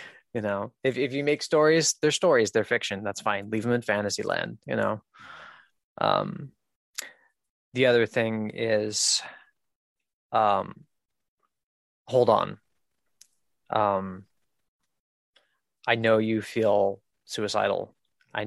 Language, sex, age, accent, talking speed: English, male, 20-39, American, 115 wpm